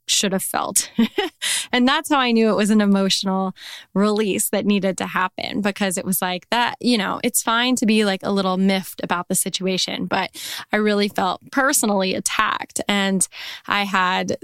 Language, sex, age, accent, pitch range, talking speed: English, female, 10-29, American, 190-220 Hz, 185 wpm